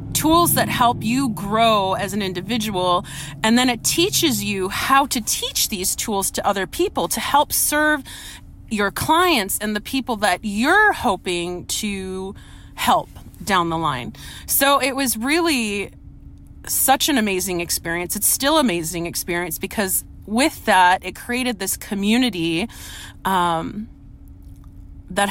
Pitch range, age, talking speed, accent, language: 185-235 Hz, 30-49, 140 wpm, American, English